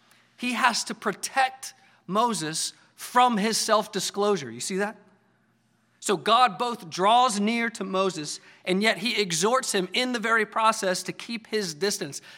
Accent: American